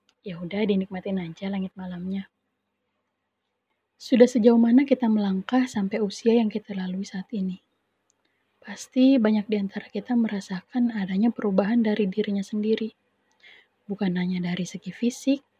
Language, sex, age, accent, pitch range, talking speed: Indonesian, female, 20-39, native, 200-240 Hz, 130 wpm